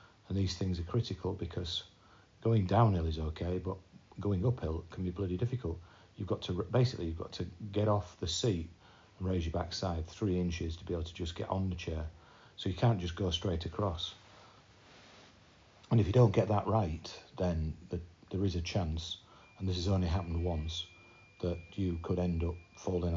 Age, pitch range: 40-59, 85-105 Hz